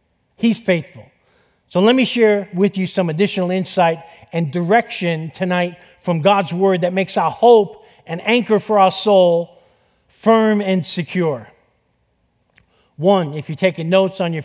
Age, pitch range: 50-69, 175-215 Hz